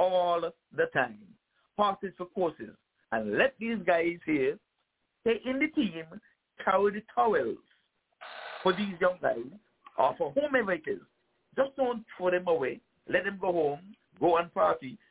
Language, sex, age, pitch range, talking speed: English, male, 60-79, 180-275 Hz, 155 wpm